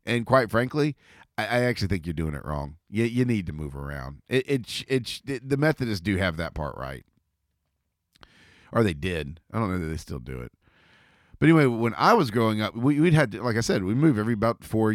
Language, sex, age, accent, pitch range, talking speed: English, male, 40-59, American, 90-130 Hz, 230 wpm